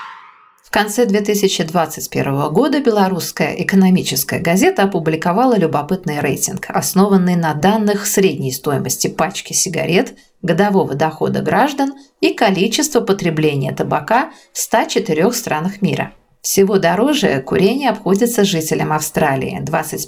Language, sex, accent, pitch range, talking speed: Russian, female, native, 160-210 Hz, 105 wpm